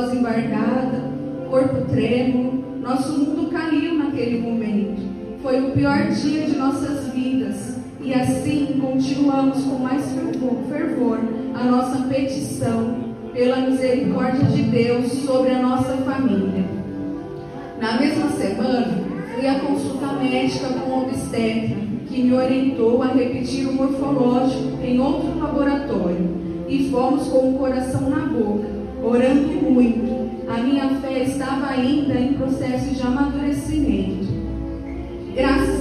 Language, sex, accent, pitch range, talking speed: Portuguese, female, Brazilian, 245-270 Hz, 125 wpm